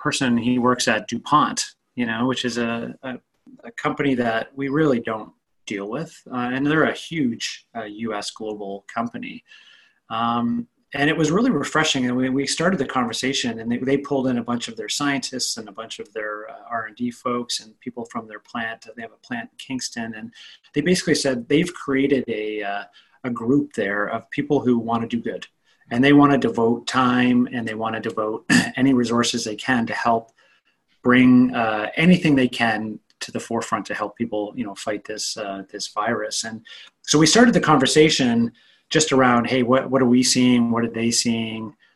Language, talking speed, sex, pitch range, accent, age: English, 200 wpm, male, 115-140 Hz, American, 30-49